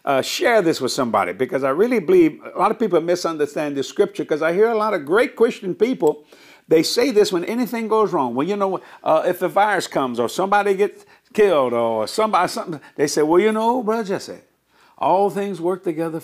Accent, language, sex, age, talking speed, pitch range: American, English, male, 60-79, 215 wpm, 165-230 Hz